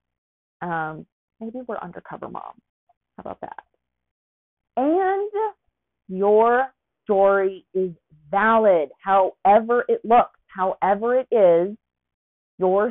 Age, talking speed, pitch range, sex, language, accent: 30-49, 95 wpm, 180-245 Hz, female, English, American